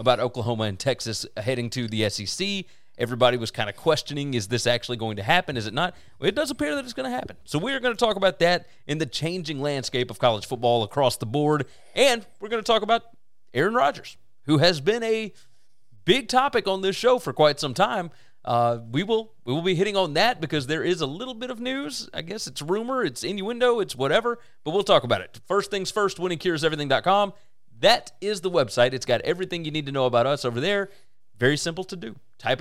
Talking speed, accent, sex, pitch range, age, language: 230 wpm, American, male, 120-185 Hz, 30-49, English